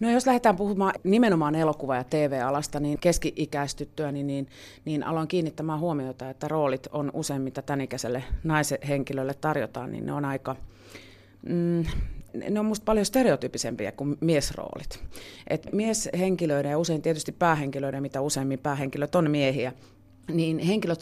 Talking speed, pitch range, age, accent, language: 135 wpm, 135-165 Hz, 30-49, native, Finnish